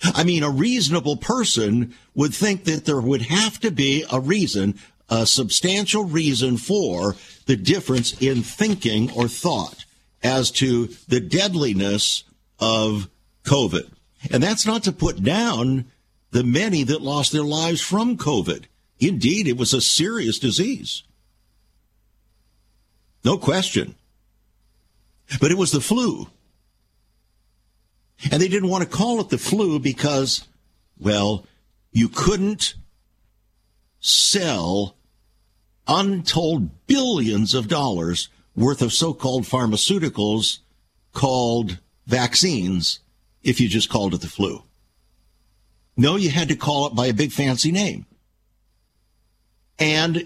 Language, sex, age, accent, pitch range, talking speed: English, male, 60-79, American, 105-160 Hz, 120 wpm